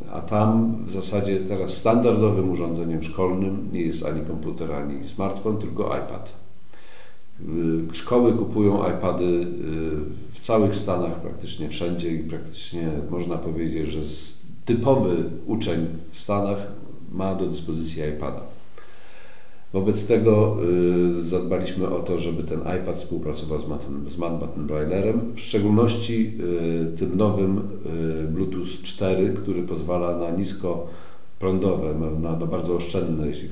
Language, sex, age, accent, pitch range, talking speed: Polish, male, 50-69, native, 80-100 Hz, 120 wpm